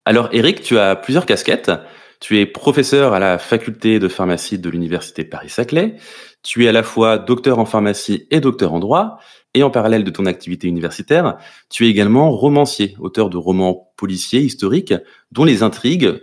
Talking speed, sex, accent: 180 wpm, male, French